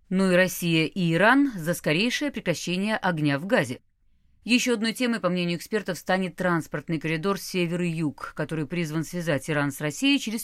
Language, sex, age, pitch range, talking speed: Russian, female, 30-49, 155-215 Hz, 170 wpm